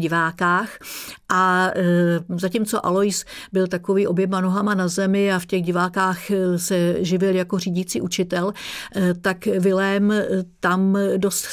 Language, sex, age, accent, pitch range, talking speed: Czech, female, 50-69, native, 180-205 Hz, 120 wpm